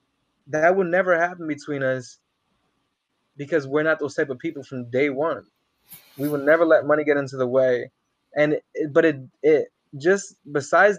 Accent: American